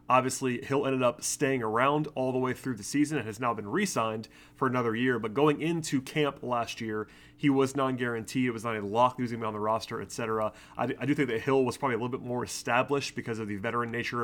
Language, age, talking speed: English, 30-49, 245 wpm